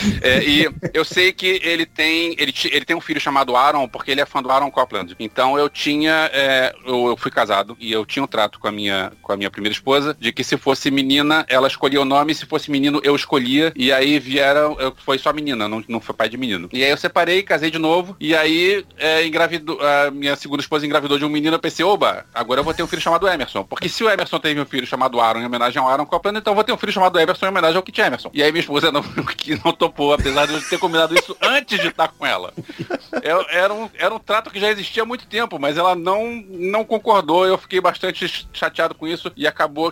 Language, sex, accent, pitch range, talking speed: Portuguese, male, Brazilian, 140-185 Hz, 260 wpm